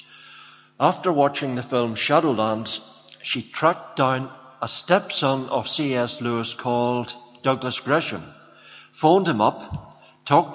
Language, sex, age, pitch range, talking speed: English, male, 60-79, 110-140 Hz, 115 wpm